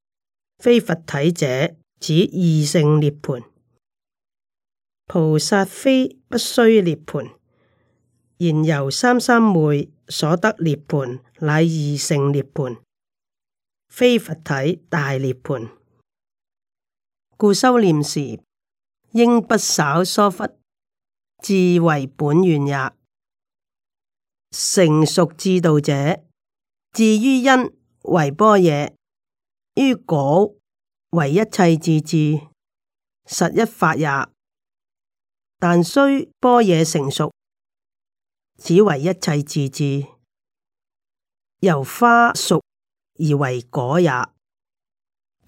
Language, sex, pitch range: Chinese, female, 145-200 Hz